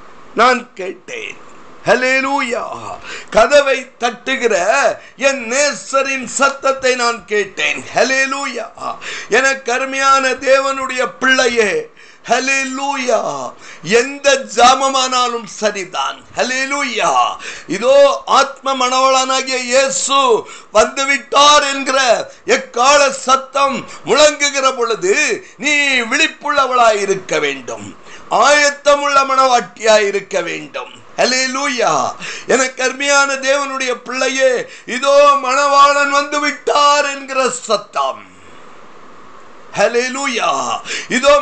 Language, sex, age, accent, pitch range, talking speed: Tamil, male, 50-69, native, 250-285 Hz, 70 wpm